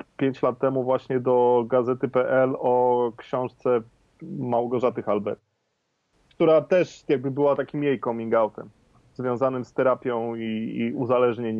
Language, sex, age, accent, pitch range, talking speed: Polish, male, 30-49, native, 135-175 Hz, 125 wpm